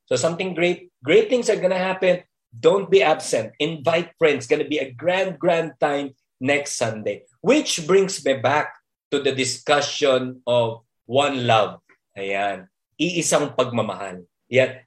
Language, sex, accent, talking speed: Filipino, male, native, 145 wpm